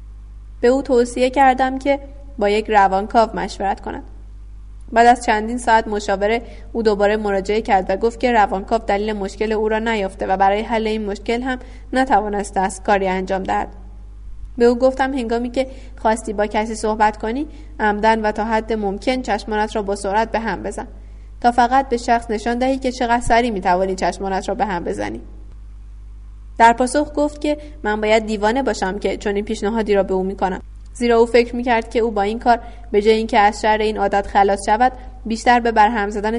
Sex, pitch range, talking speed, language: female, 200-240 Hz, 190 wpm, Persian